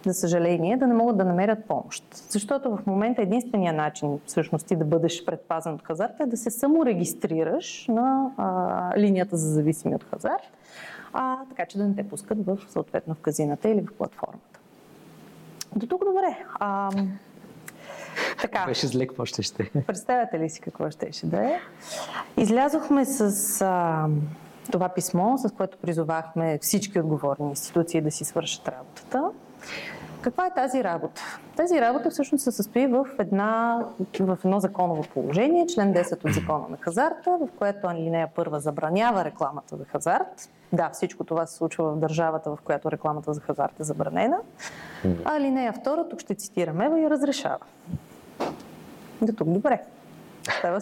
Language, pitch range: Bulgarian, 160-235 Hz